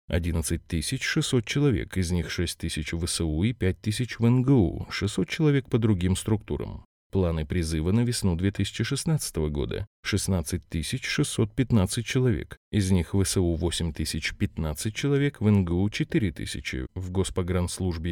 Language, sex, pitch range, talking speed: Russian, male, 85-120 Hz, 135 wpm